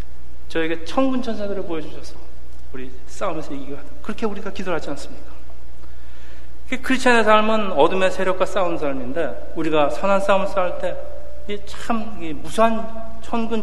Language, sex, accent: Korean, male, native